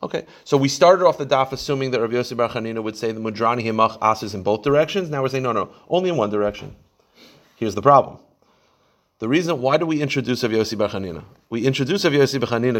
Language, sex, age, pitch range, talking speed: English, male, 30-49, 110-140 Hz, 205 wpm